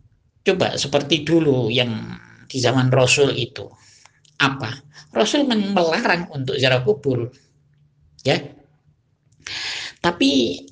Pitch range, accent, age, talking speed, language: 125-190 Hz, native, 50-69, 90 wpm, Indonesian